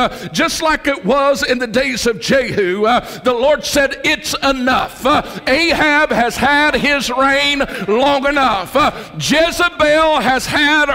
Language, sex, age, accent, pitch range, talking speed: English, male, 60-79, American, 260-300 Hz, 155 wpm